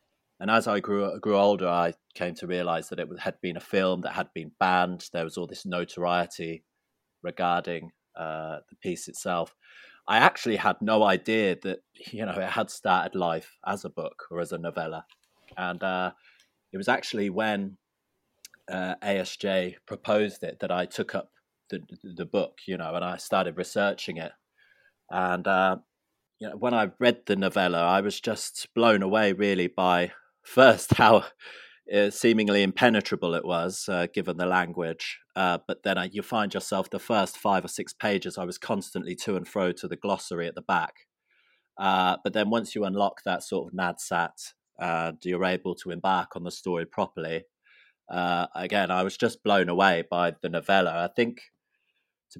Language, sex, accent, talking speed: English, male, British, 180 wpm